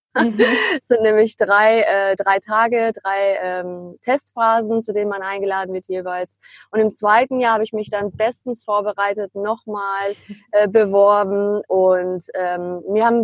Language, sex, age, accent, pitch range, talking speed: German, female, 30-49, German, 190-230 Hz, 150 wpm